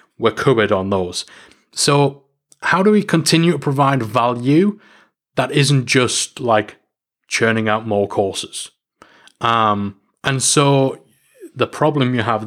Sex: male